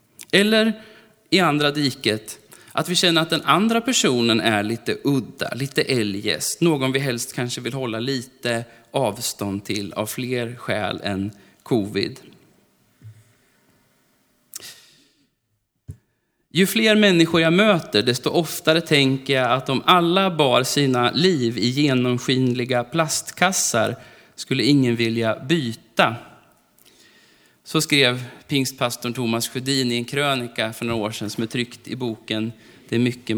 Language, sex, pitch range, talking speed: Swedish, male, 115-160 Hz, 130 wpm